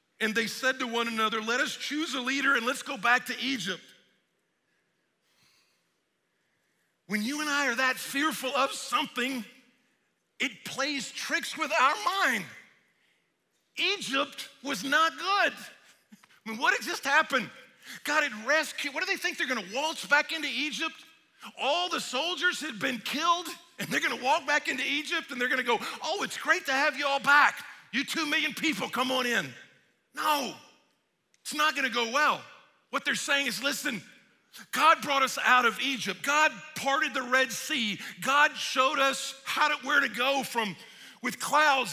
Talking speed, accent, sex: 170 wpm, American, male